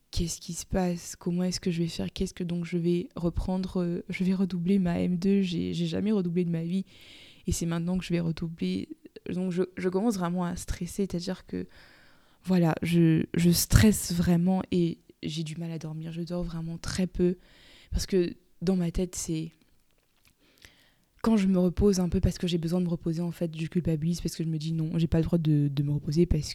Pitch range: 165-185 Hz